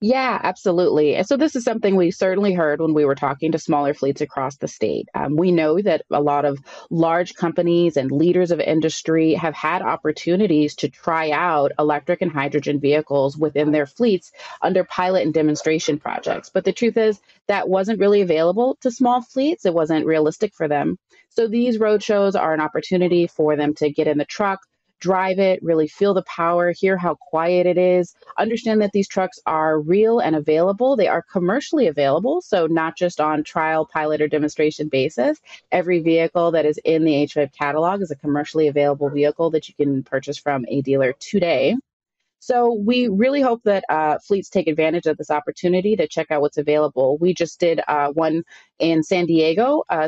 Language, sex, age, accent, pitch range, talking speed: English, female, 30-49, American, 150-185 Hz, 190 wpm